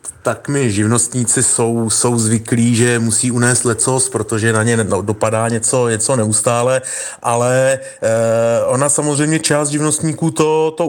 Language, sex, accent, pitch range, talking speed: Czech, male, native, 115-135 Hz, 130 wpm